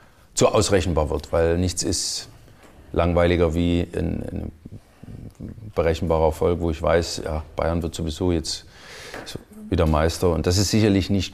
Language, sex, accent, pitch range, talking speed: German, male, German, 85-100 Hz, 140 wpm